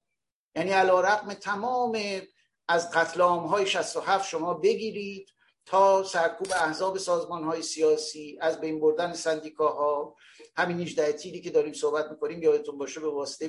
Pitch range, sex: 155-205 Hz, male